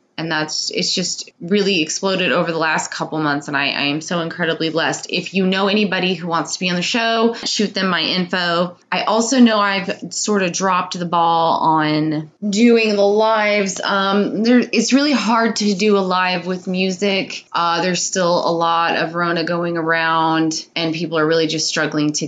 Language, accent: English, American